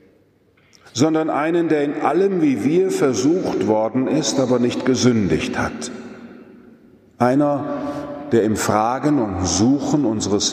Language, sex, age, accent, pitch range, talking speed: German, male, 40-59, German, 115-145 Hz, 120 wpm